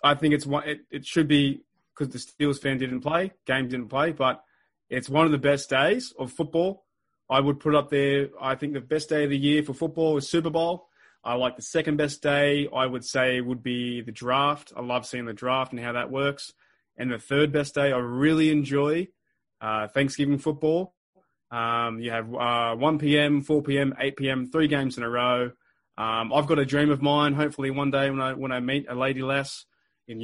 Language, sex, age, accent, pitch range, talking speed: English, male, 20-39, Australian, 125-150 Hz, 220 wpm